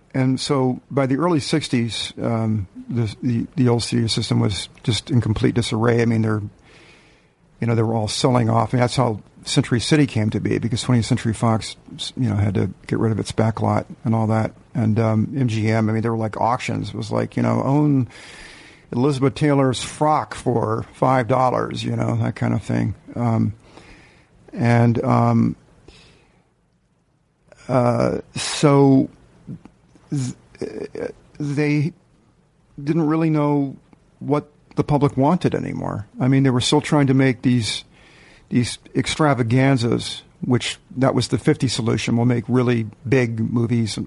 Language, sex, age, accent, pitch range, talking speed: English, male, 50-69, American, 115-130 Hz, 160 wpm